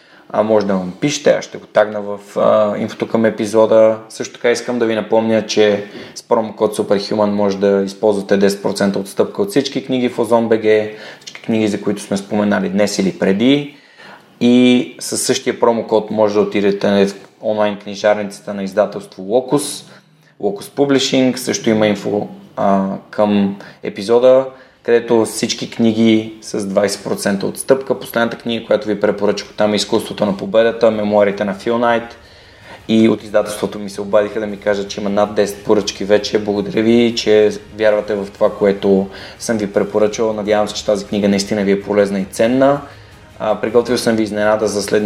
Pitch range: 100-115 Hz